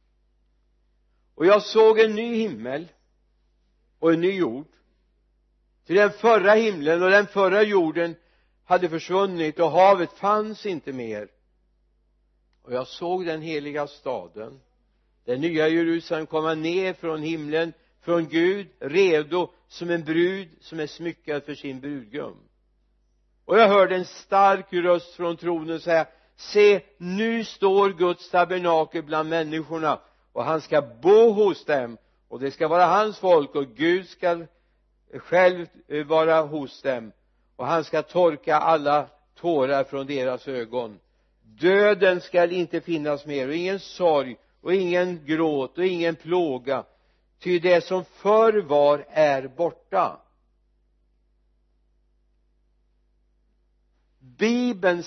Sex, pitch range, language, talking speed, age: male, 145-185 Hz, Swedish, 125 wpm, 60-79